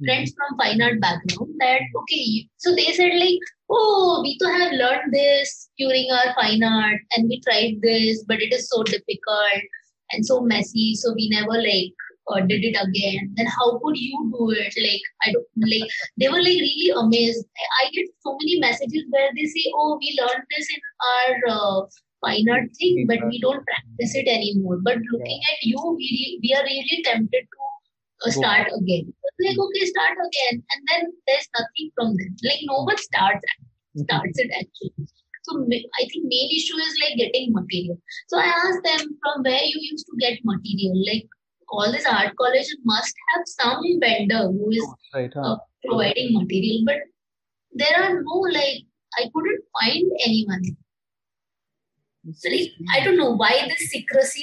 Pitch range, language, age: 220-310 Hz, English, 20-39